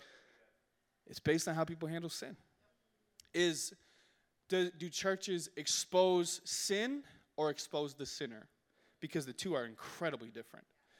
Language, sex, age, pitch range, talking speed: English, male, 20-39, 145-190 Hz, 125 wpm